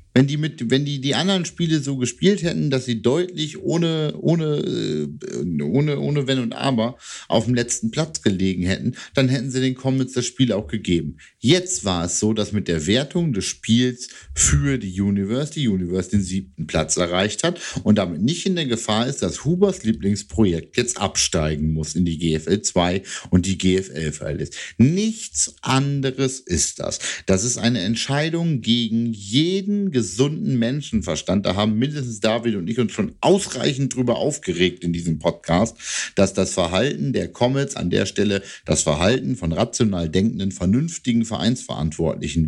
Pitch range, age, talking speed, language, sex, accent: 95-140 Hz, 50-69, 165 wpm, German, male, German